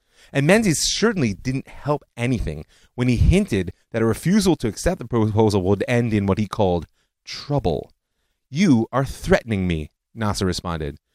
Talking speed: 155 wpm